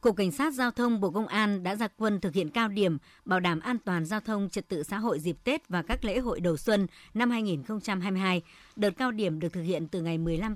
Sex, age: male, 60-79